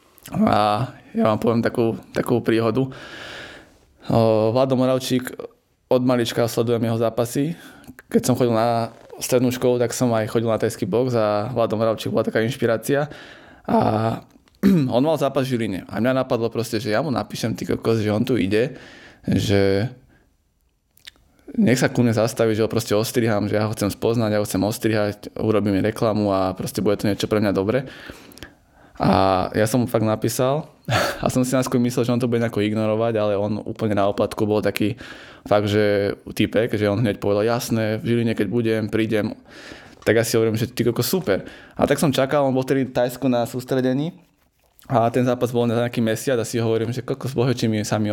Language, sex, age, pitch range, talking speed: Slovak, male, 20-39, 110-125 Hz, 190 wpm